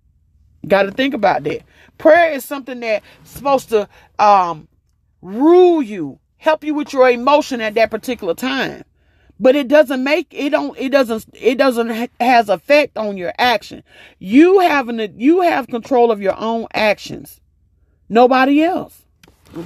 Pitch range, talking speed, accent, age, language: 185-275 Hz, 155 wpm, American, 40-59, English